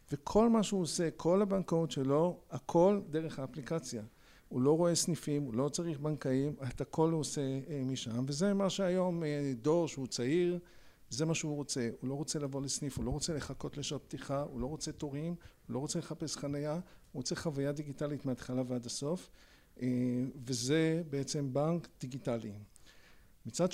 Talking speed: 165 wpm